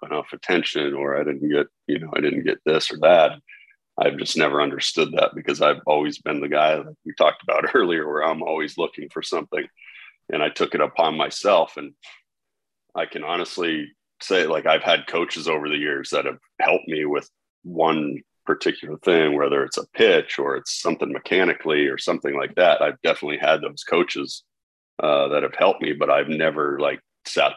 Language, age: English, 40-59